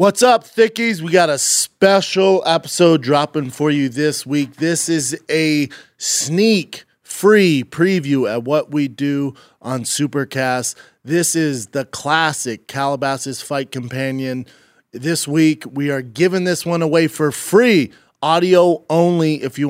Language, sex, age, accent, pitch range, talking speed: English, male, 30-49, American, 135-165 Hz, 140 wpm